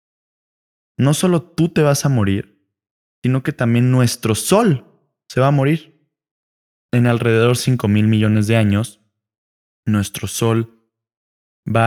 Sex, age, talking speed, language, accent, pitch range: male, 20-39, 135 wpm, Spanish, Mexican, 100-125 Hz